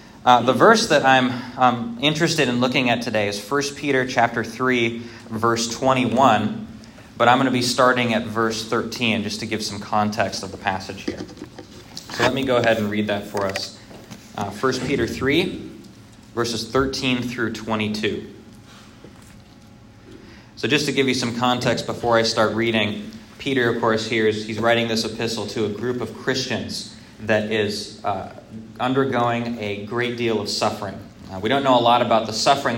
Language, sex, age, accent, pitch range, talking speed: English, male, 20-39, American, 110-130 Hz, 180 wpm